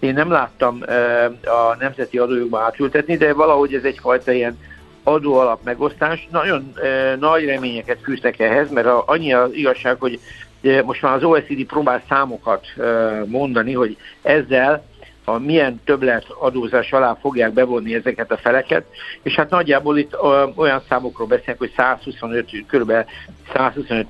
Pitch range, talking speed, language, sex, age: 120-140 Hz, 135 wpm, Hungarian, male, 60-79